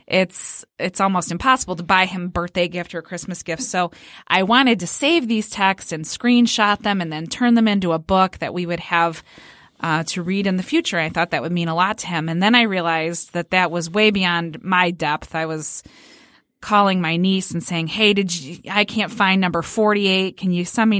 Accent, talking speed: American, 225 wpm